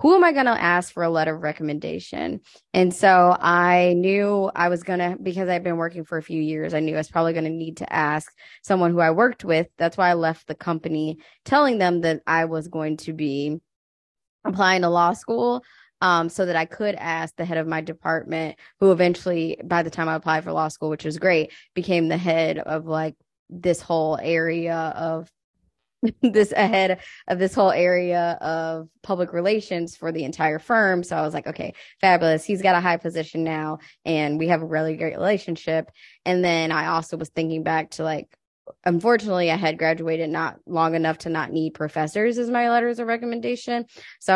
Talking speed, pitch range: 205 wpm, 160-185 Hz